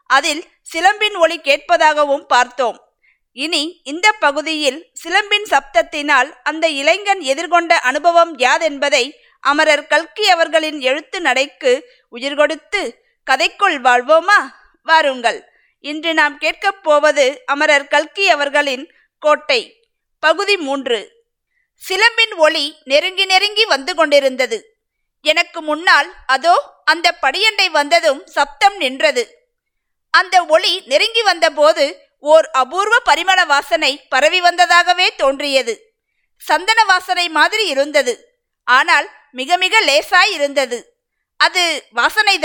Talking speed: 85 wpm